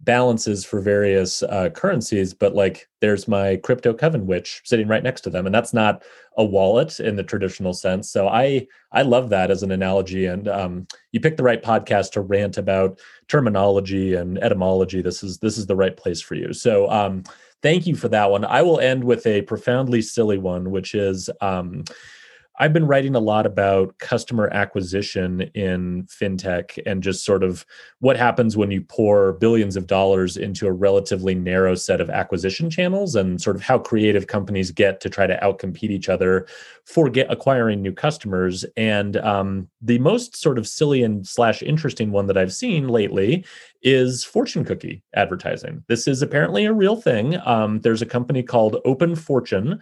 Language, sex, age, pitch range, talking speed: English, male, 30-49, 95-120 Hz, 185 wpm